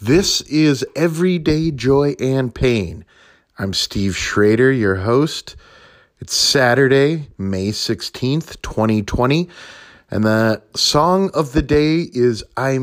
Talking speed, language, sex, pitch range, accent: 110 wpm, English, male, 100-145 Hz, American